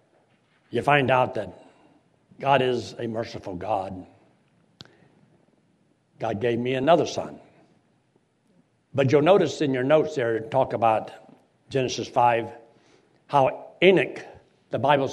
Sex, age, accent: male, 60-79, American